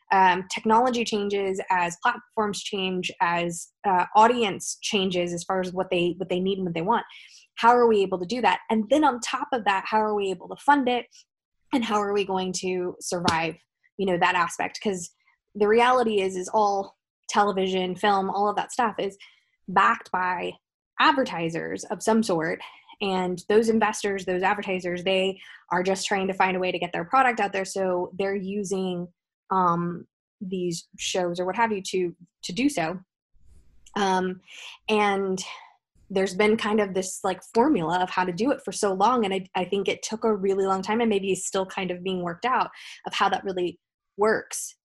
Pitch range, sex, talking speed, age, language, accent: 180-215 Hz, female, 195 wpm, 20-39, English, American